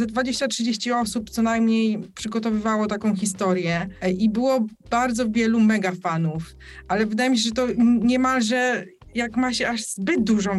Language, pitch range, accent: Polish, 205-240 Hz, native